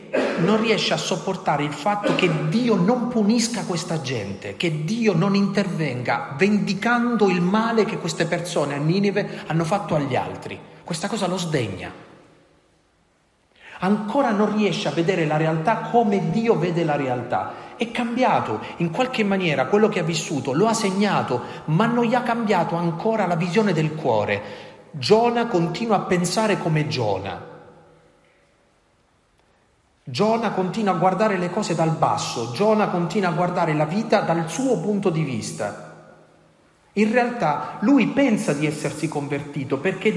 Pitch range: 155-215 Hz